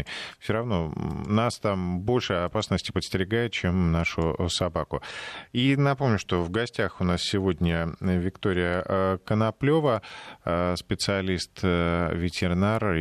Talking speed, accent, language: 95 wpm, native, Russian